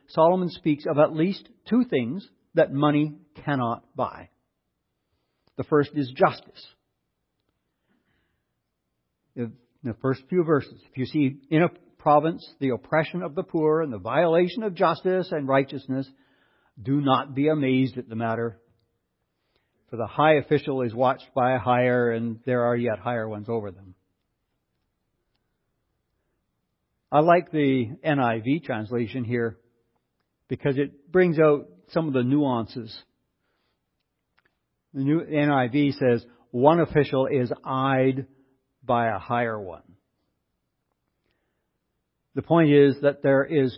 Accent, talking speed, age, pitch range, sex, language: American, 130 wpm, 60-79, 120-150 Hz, male, English